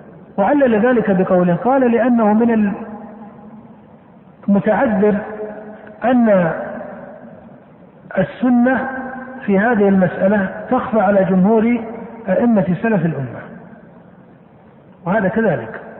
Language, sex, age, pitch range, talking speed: Arabic, male, 50-69, 190-230 Hz, 75 wpm